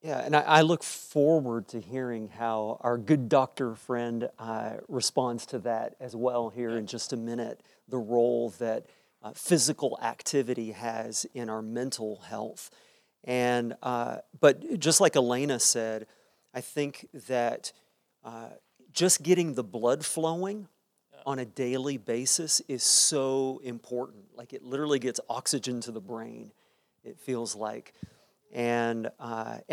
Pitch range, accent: 115-140 Hz, American